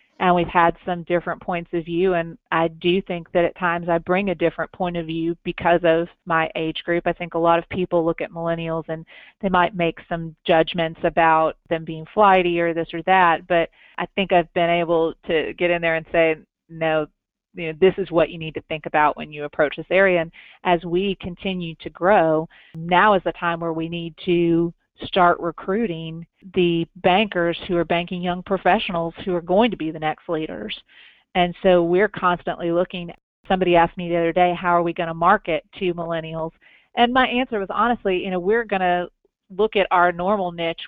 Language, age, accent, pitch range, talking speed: English, 30-49, American, 165-180 Hz, 205 wpm